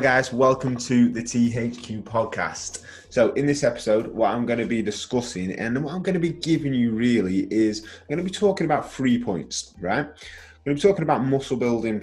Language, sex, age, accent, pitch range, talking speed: English, male, 20-39, British, 105-135 Hz, 195 wpm